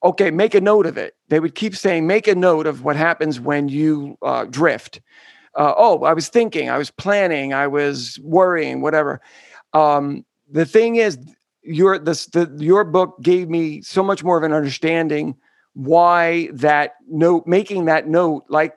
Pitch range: 155-190 Hz